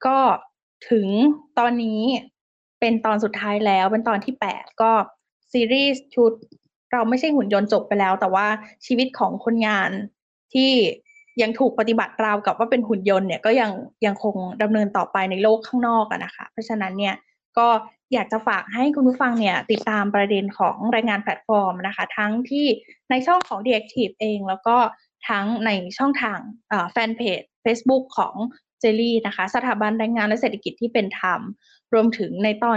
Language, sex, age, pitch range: Thai, female, 10-29, 205-245 Hz